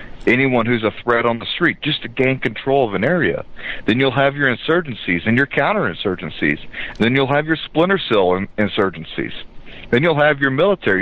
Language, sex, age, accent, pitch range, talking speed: English, male, 40-59, American, 90-115 Hz, 185 wpm